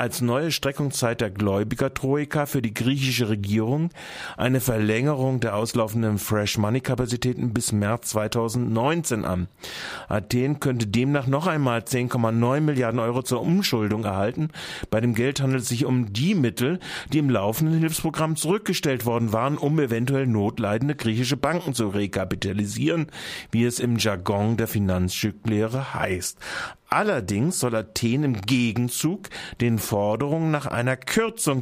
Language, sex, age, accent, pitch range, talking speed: German, male, 40-59, German, 110-145 Hz, 130 wpm